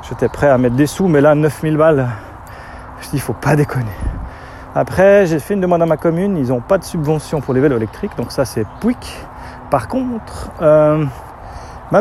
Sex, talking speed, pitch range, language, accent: male, 205 wpm, 115-150 Hz, French, French